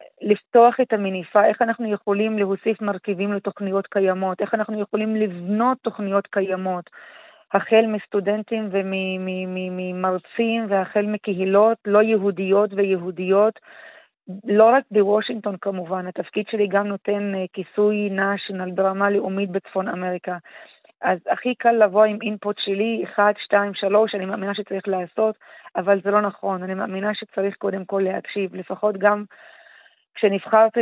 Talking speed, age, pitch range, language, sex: 125 wpm, 30-49, 195-210 Hz, Hebrew, female